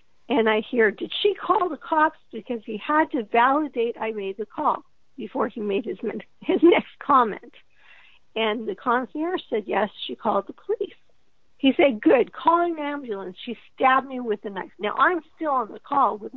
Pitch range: 220-300 Hz